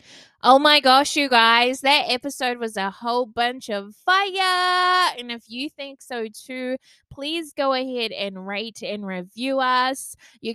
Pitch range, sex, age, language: 205-265 Hz, female, 20-39, English